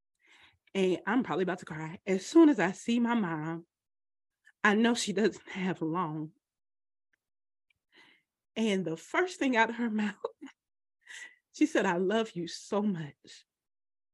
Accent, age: American, 30-49